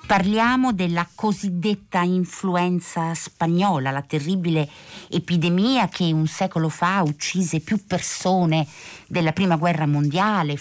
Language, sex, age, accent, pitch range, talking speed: Italian, female, 50-69, native, 150-185 Hz, 105 wpm